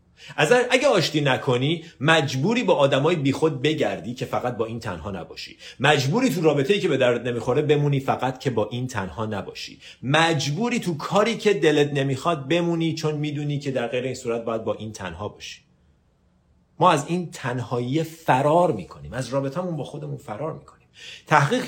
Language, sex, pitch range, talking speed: Persian, male, 95-150 Hz, 170 wpm